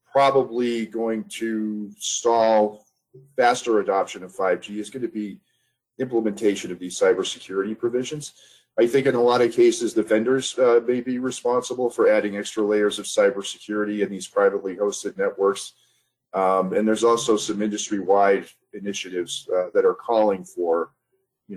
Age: 40-59